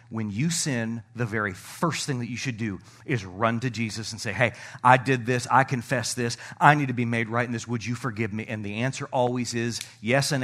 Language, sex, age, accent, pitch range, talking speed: English, male, 40-59, American, 120-160 Hz, 245 wpm